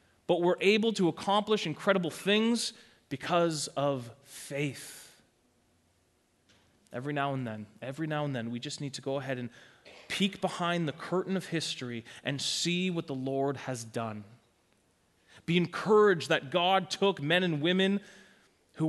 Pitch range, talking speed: 130-200 Hz, 150 wpm